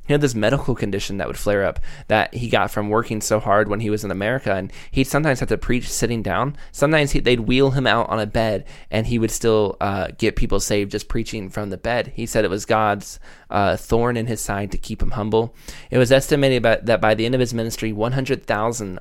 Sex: male